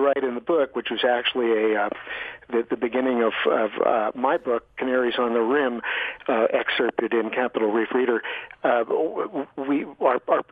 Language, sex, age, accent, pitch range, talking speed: English, male, 50-69, American, 120-140 Hz, 170 wpm